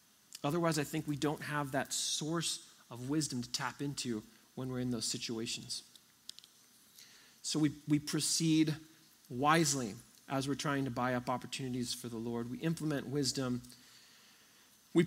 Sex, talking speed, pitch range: male, 145 wpm, 125-160 Hz